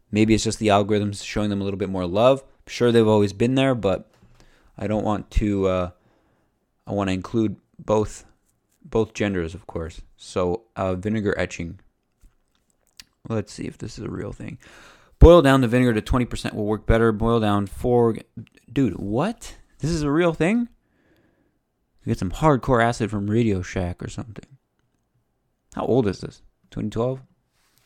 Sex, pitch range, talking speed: male, 95-115 Hz, 175 wpm